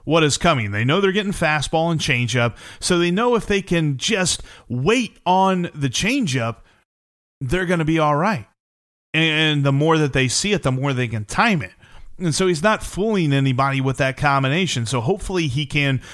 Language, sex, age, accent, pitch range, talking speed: English, male, 30-49, American, 125-170 Hz, 195 wpm